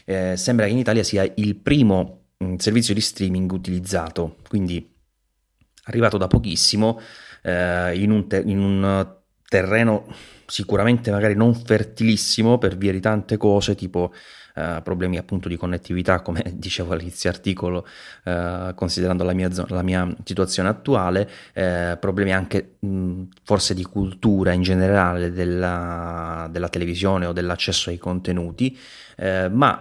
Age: 30-49